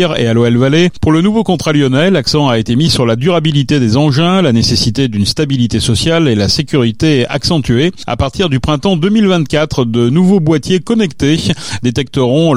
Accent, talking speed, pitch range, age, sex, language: French, 175 wpm, 115-155 Hz, 40-59, male, French